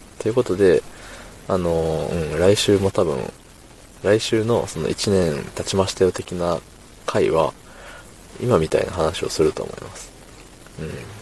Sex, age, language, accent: male, 20-39, Japanese, native